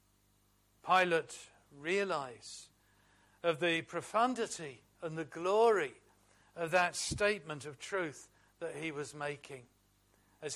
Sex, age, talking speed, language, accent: male, 60-79, 100 wpm, English, British